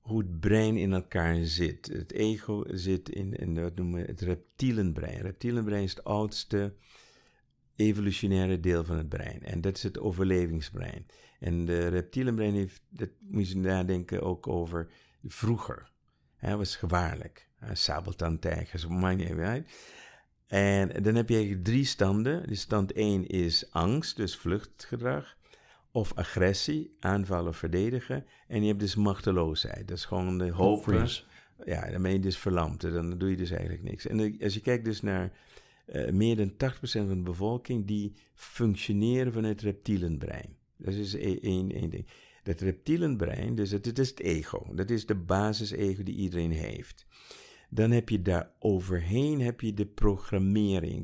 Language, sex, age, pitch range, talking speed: Dutch, male, 50-69, 90-110 Hz, 160 wpm